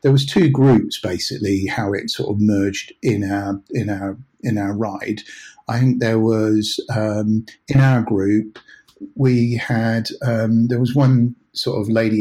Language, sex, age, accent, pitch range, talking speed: English, male, 50-69, British, 105-125 Hz, 165 wpm